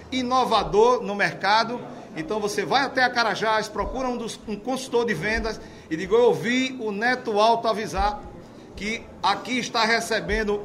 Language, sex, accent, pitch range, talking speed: Portuguese, male, Brazilian, 200-235 Hz, 160 wpm